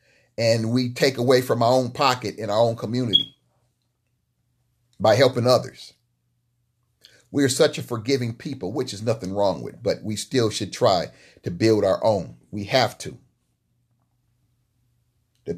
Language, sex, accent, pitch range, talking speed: English, male, American, 120-140 Hz, 150 wpm